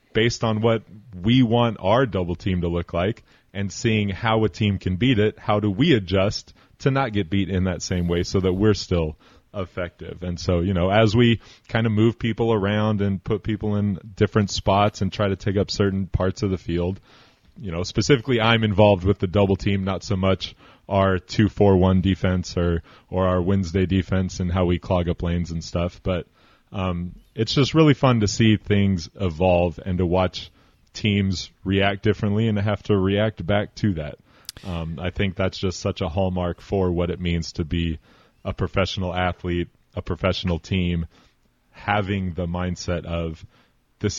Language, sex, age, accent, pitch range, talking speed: English, male, 30-49, American, 90-105 Hz, 190 wpm